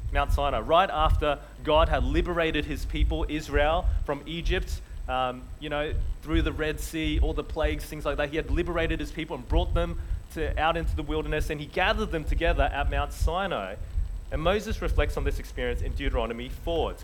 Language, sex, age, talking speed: English, male, 30-49, 195 wpm